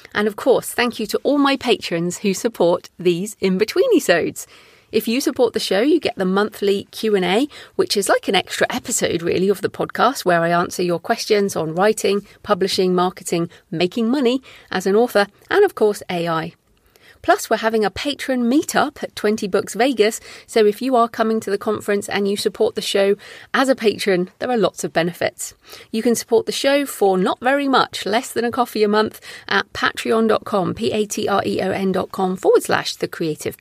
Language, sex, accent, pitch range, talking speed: English, female, British, 185-240 Hz, 185 wpm